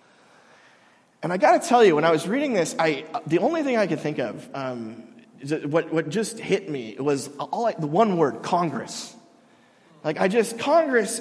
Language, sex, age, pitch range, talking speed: English, male, 30-49, 140-200 Hz, 195 wpm